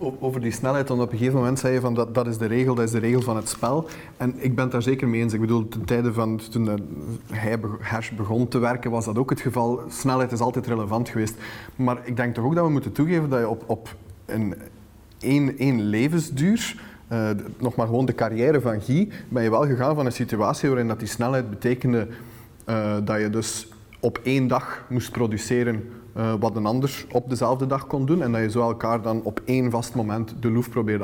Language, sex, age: Dutch, male, 30-49